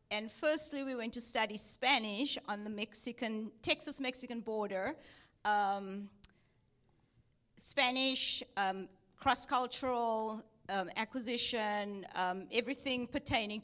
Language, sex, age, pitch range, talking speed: English, female, 40-59, 210-275 Hz, 90 wpm